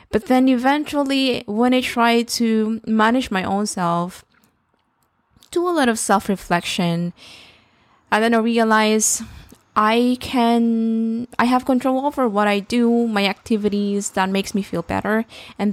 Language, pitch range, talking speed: English, 185-235 Hz, 140 wpm